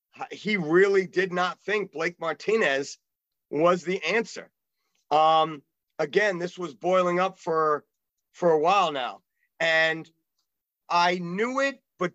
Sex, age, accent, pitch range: male, 40-59, American, 175-220 Hz